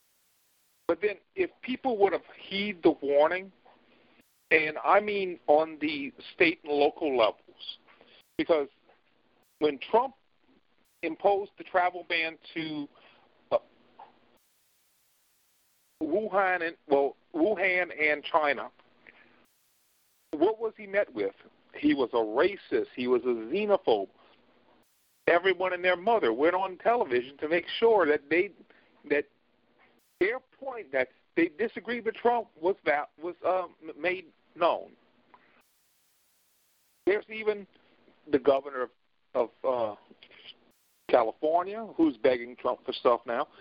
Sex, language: male, English